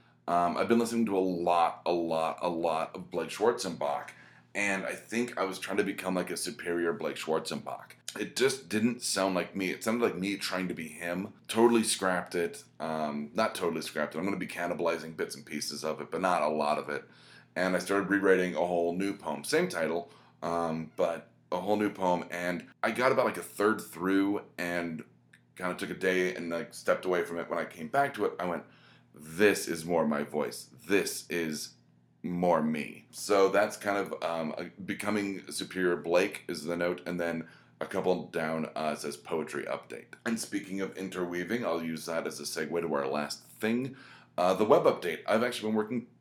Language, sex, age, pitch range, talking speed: English, male, 30-49, 85-105 Hz, 205 wpm